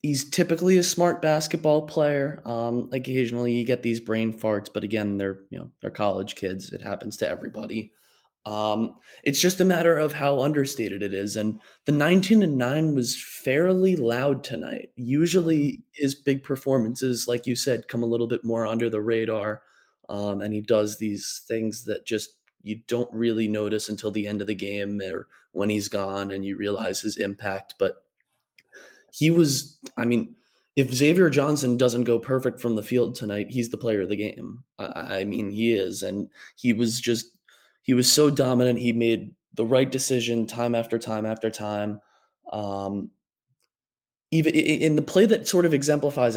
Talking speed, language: 180 wpm, English